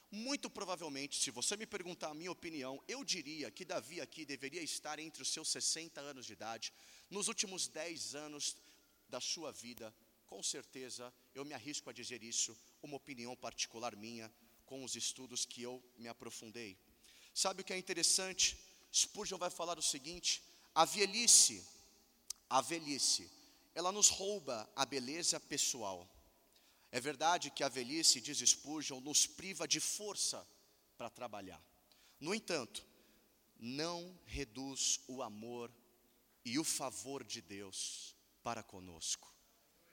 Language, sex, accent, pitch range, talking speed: Portuguese, male, Brazilian, 115-160 Hz, 145 wpm